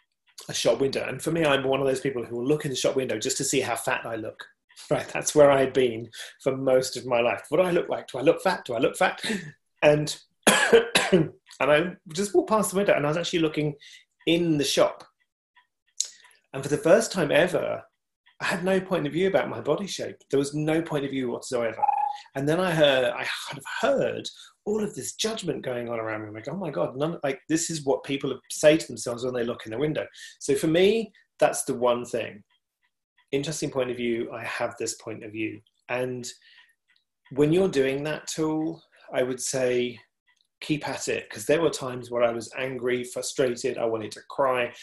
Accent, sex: British, male